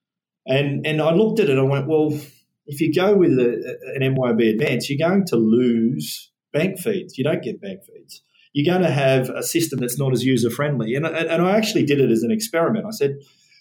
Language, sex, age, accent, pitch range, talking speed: English, male, 30-49, Australian, 120-150 Hz, 225 wpm